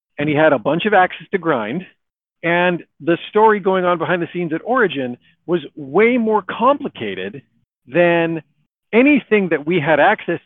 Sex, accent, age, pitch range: male, American, 50-69, 140-185 Hz